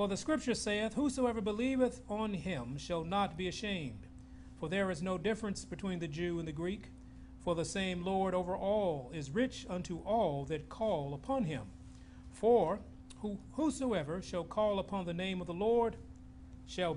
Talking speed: 170 wpm